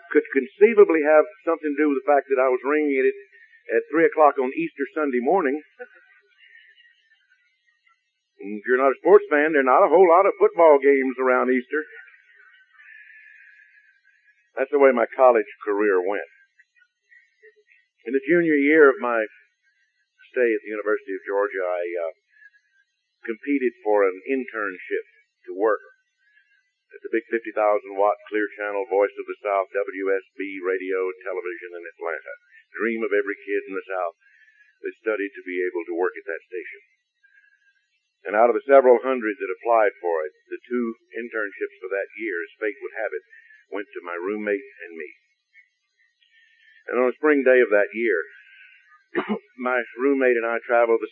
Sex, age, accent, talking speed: male, 50-69, American, 165 wpm